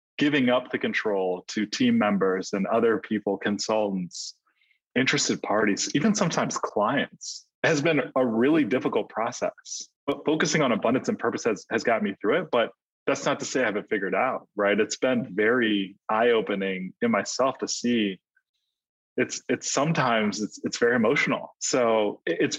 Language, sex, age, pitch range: English, male, 20-39, 100-120 Hz